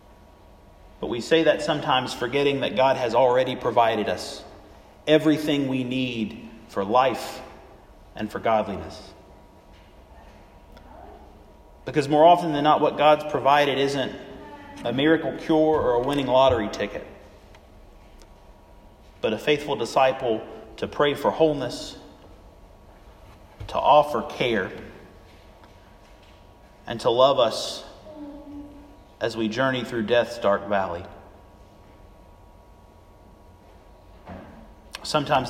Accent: American